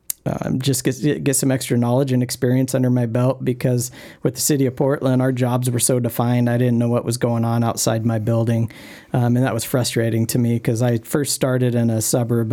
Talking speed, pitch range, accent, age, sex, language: 225 wpm, 115-130 Hz, American, 40-59, male, English